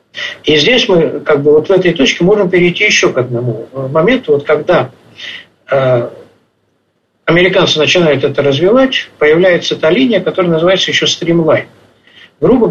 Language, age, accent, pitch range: Russian, 60-79, native, 145-185 Hz